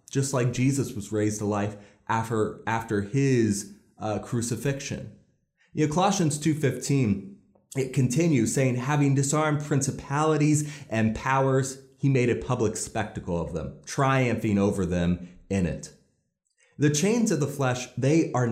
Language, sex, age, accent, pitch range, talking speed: English, male, 30-49, American, 105-145 Hz, 135 wpm